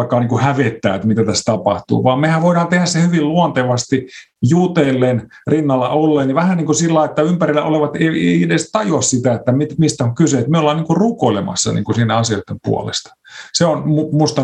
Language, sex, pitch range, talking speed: Finnish, male, 120-160 Hz, 180 wpm